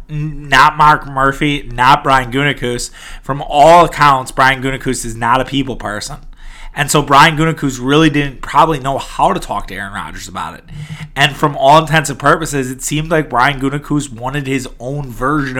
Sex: male